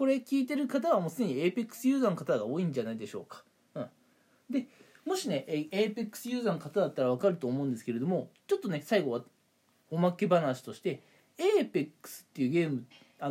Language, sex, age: Japanese, male, 20-39